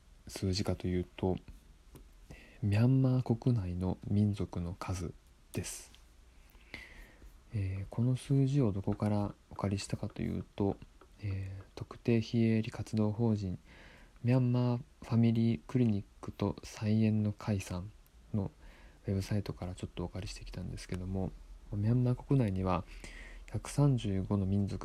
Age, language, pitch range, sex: 20-39, Japanese, 90-110 Hz, male